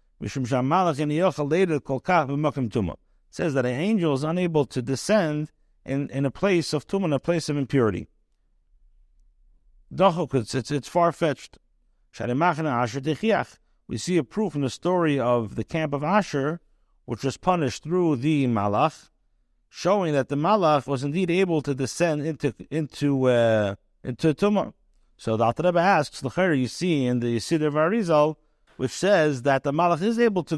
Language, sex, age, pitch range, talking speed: English, male, 50-69, 125-170 Hz, 150 wpm